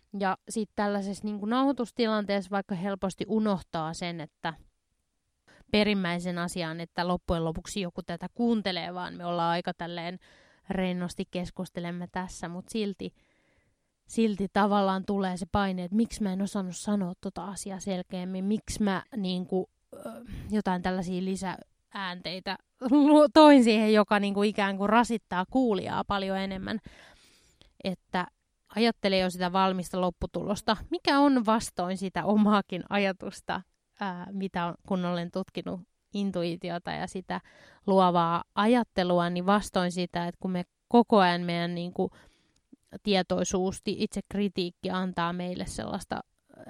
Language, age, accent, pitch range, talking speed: Finnish, 20-39, native, 180-210 Hz, 120 wpm